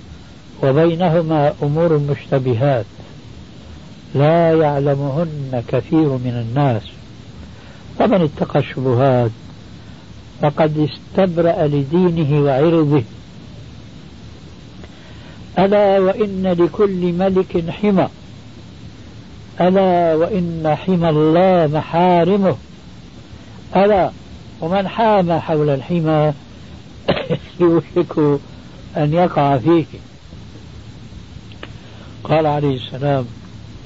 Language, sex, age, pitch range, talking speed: Arabic, male, 60-79, 120-170 Hz, 65 wpm